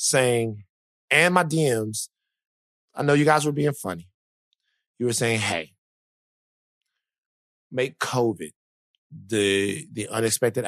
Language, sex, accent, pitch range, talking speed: English, male, American, 110-140 Hz, 110 wpm